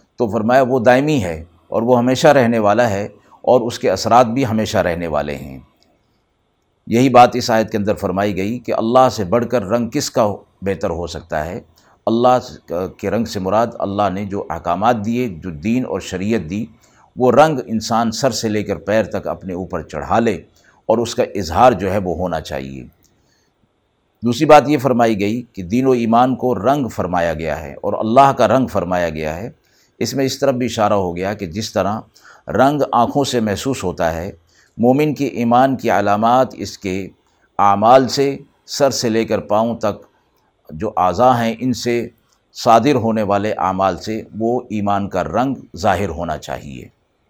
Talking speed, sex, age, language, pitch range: 185 wpm, male, 50-69, Urdu, 100-125 Hz